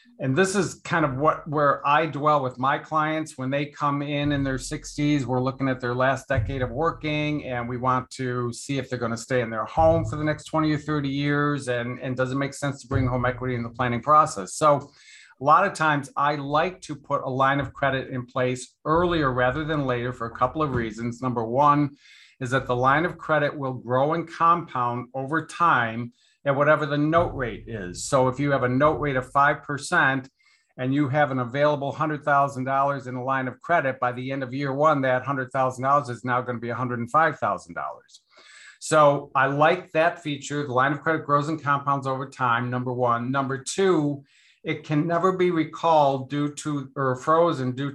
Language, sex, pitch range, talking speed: English, male, 130-155 Hz, 220 wpm